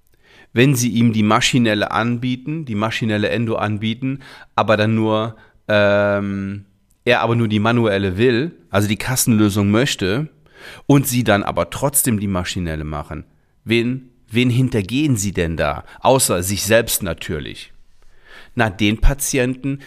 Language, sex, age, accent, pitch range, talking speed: German, male, 40-59, German, 100-125 Hz, 135 wpm